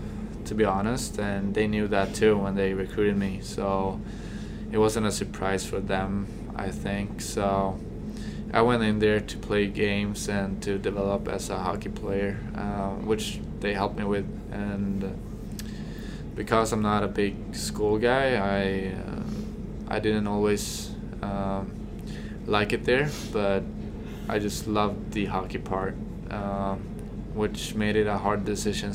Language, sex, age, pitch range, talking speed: English, male, 20-39, 100-105 Hz, 150 wpm